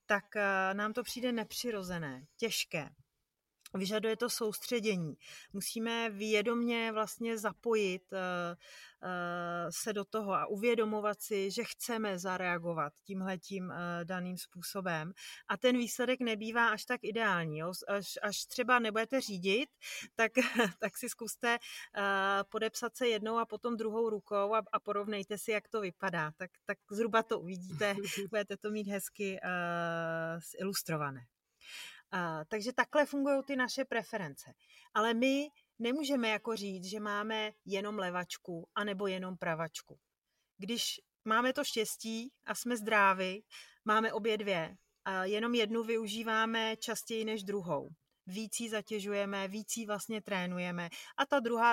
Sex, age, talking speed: female, 30-49, 130 wpm